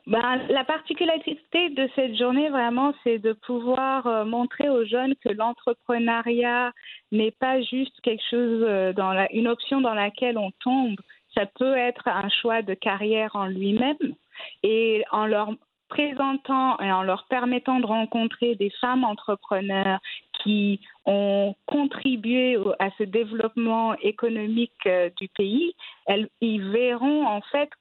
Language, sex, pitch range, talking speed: French, female, 210-260 Hz, 145 wpm